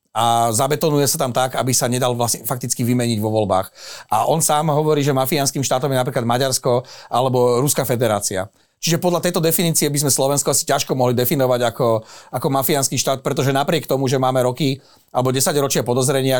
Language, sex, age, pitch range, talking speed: Slovak, male, 40-59, 125-150 Hz, 185 wpm